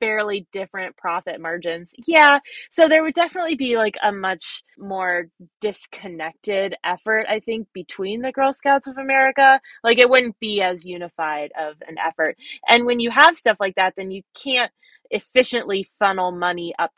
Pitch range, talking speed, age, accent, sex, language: 180-240 Hz, 165 wpm, 20-39, American, female, English